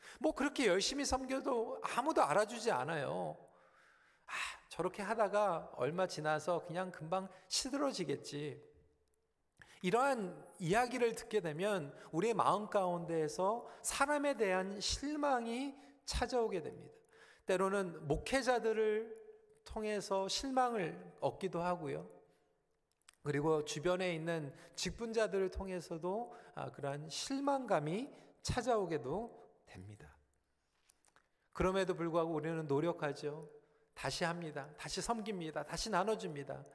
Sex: male